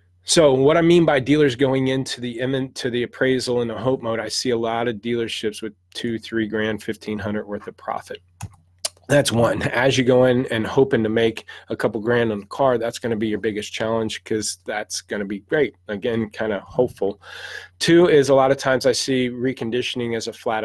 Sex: male